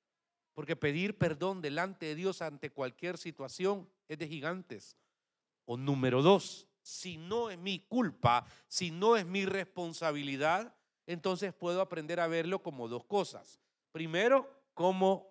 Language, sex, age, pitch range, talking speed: Spanish, male, 50-69, 170-210 Hz, 135 wpm